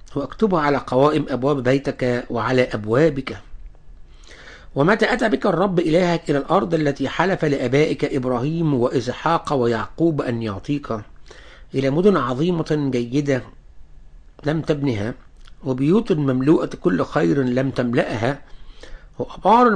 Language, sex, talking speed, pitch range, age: English, male, 105 wpm, 110-155 Hz, 60-79